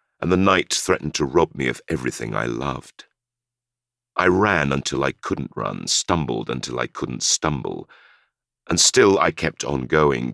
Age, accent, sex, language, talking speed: 50-69, British, male, English, 165 wpm